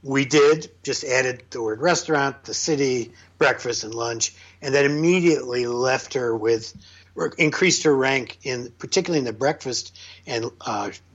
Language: English